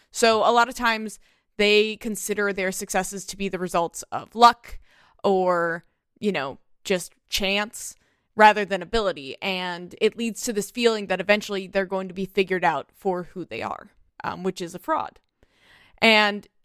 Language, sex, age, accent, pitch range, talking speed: English, female, 20-39, American, 185-220 Hz, 170 wpm